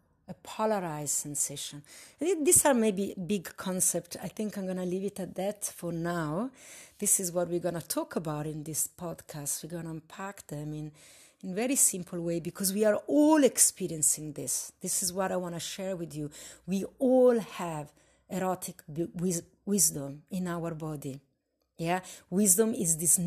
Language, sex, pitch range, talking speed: English, female, 165-210 Hz, 175 wpm